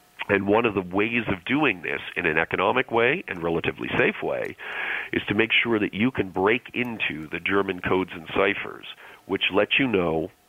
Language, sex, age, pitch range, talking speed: English, male, 40-59, 90-115 Hz, 195 wpm